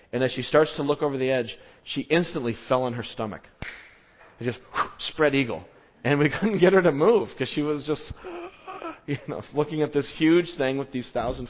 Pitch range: 110-145 Hz